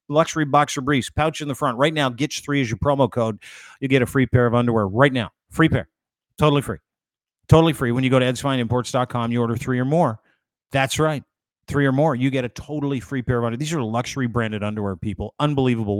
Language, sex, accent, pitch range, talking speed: English, male, American, 120-145 Hz, 220 wpm